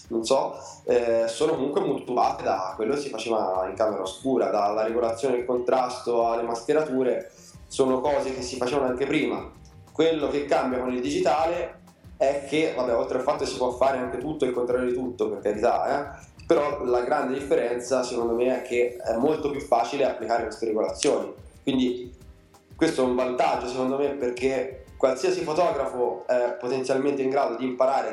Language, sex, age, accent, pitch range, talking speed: Italian, male, 20-39, native, 115-135 Hz, 175 wpm